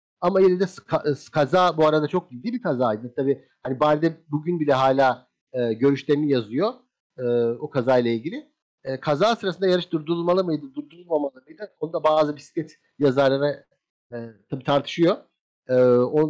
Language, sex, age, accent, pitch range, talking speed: Turkish, male, 50-69, native, 135-170 Hz, 150 wpm